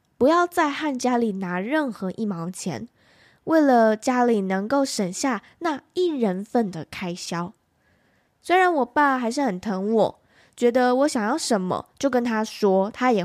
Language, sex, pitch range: Chinese, female, 195-275 Hz